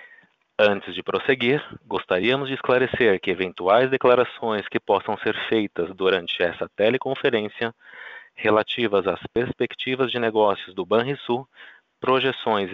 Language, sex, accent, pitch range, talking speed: Portuguese, male, Brazilian, 100-130 Hz, 115 wpm